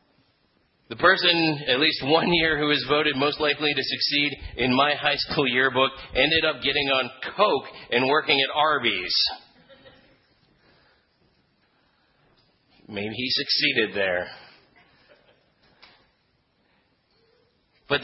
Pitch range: 130-160 Hz